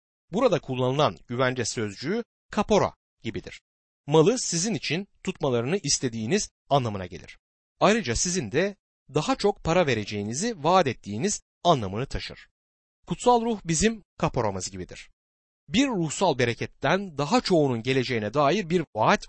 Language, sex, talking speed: Turkish, male, 120 wpm